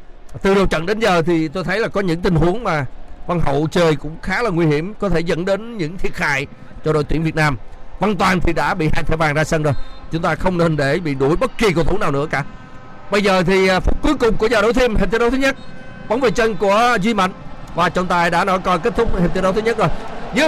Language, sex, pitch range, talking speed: Vietnamese, male, 185-245 Hz, 280 wpm